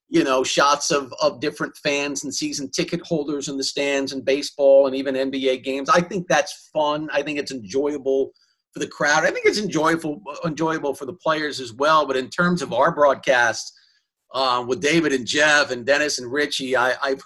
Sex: male